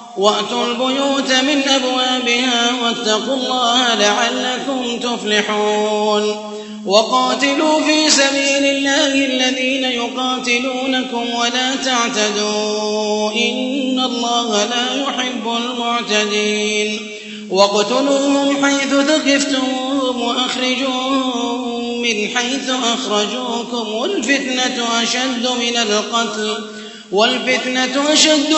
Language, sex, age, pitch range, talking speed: Arabic, male, 30-49, 235-270 Hz, 70 wpm